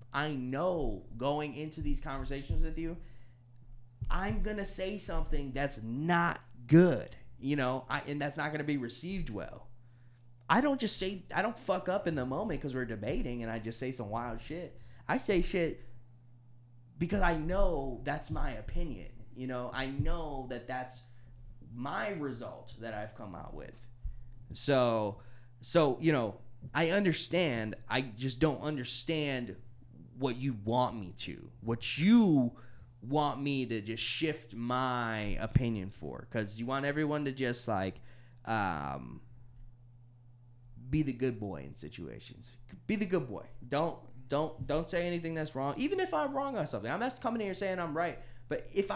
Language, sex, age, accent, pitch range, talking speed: English, male, 20-39, American, 120-155 Hz, 165 wpm